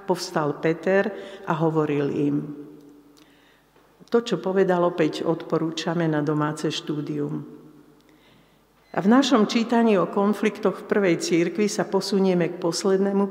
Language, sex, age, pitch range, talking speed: Slovak, female, 60-79, 165-200 Hz, 115 wpm